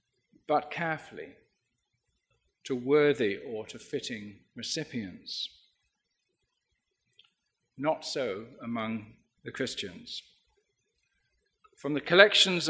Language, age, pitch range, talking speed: English, 50-69, 140-185 Hz, 75 wpm